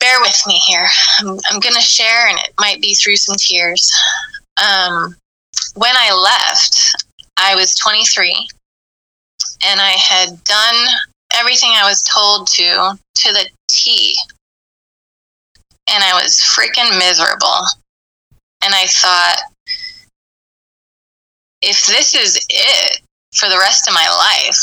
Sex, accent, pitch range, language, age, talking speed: female, American, 180-220 Hz, English, 20-39, 125 wpm